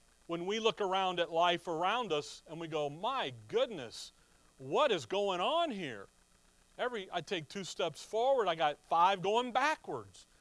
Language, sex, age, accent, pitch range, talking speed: English, male, 40-59, American, 130-190 Hz, 165 wpm